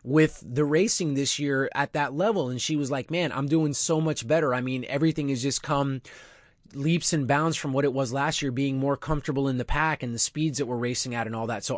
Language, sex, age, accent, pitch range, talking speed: English, male, 20-39, American, 135-165 Hz, 255 wpm